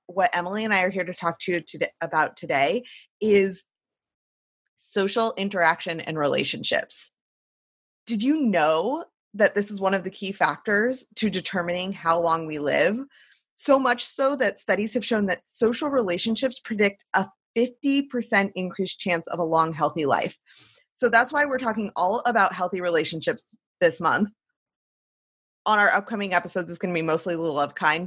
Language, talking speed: English, 165 wpm